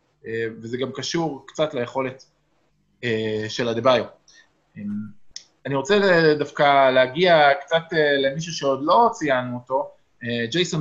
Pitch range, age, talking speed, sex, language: 120-165 Hz, 20-39, 120 wpm, male, Hebrew